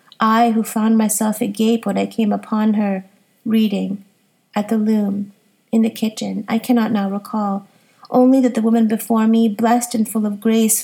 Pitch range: 205-230 Hz